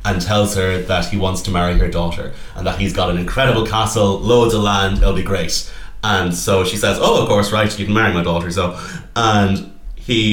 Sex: male